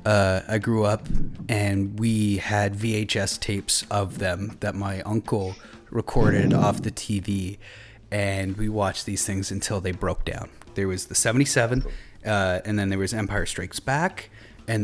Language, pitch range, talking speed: English, 100-115 Hz, 160 wpm